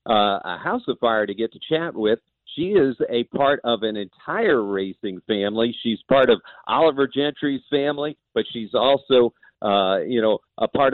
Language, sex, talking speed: English, male, 180 wpm